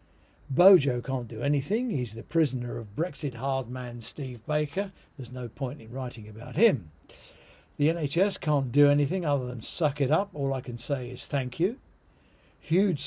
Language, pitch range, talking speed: English, 120-155 Hz, 175 wpm